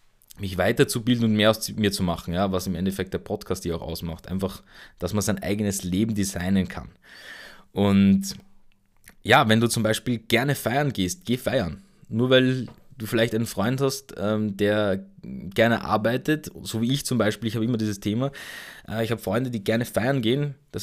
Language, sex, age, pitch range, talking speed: German, male, 20-39, 100-120 Hz, 185 wpm